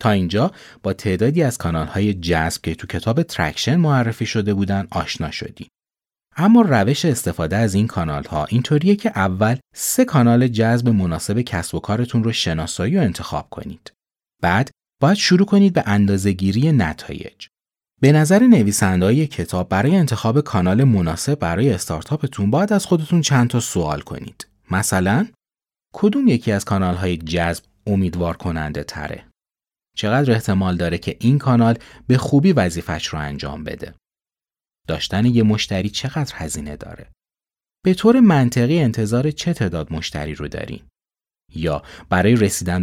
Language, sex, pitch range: Persian, male, 85-135 Hz